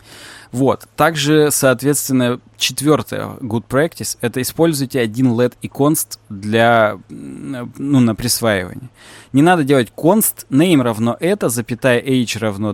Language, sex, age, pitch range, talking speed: Russian, male, 20-39, 115-150 Hz, 125 wpm